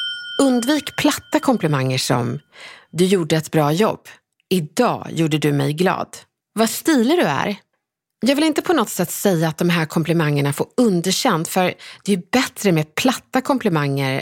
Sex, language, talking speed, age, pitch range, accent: female, Swedish, 160 wpm, 30-49, 160-245 Hz, native